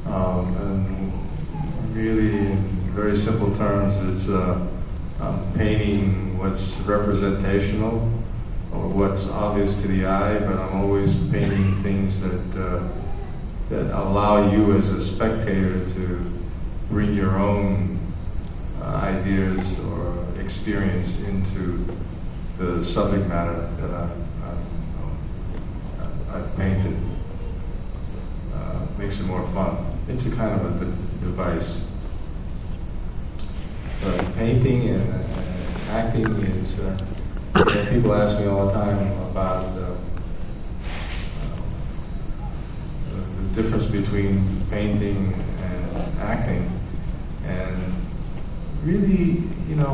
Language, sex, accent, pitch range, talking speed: English, male, American, 90-105 Hz, 105 wpm